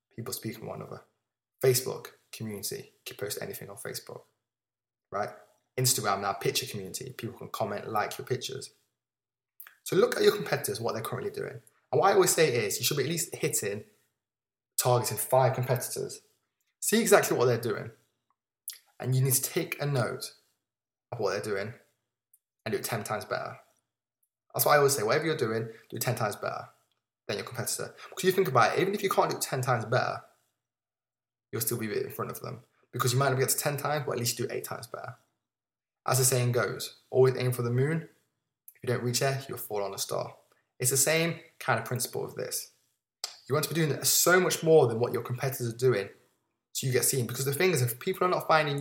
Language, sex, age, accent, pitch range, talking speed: English, male, 20-39, British, 120-155 Hz, 220 wpm